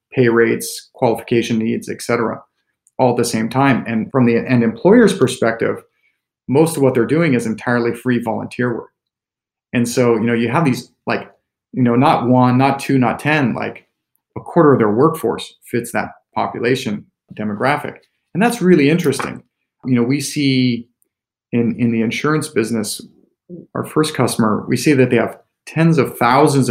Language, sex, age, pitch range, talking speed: English, male, 40-59, 120-145 Hz, 175 wpm